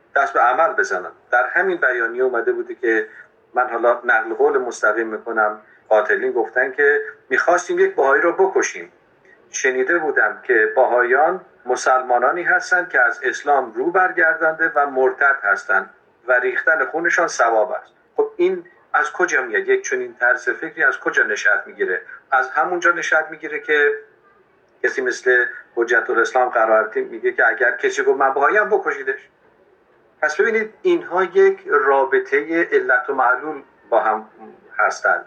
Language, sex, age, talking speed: Persian, male, 50-69, 145 wpm